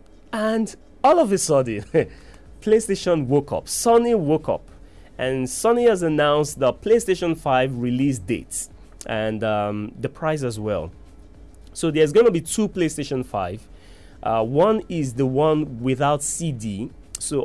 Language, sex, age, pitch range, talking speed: English, male, 30-49, 115-165 Hz, 145 wpm